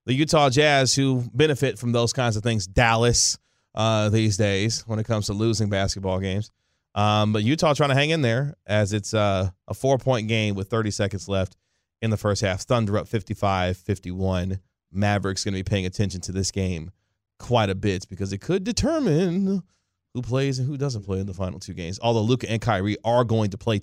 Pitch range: 95-135 Hz